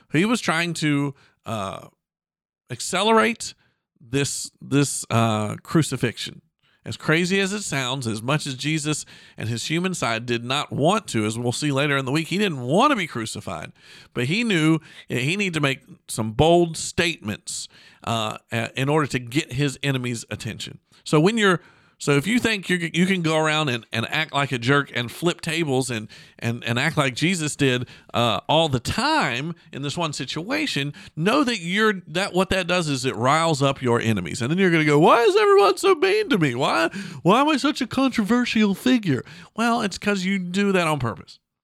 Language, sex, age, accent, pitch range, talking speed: English, male, 50-69, American, 130-185 Hz, 195 wpm